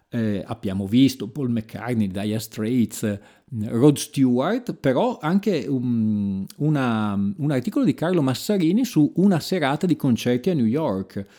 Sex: male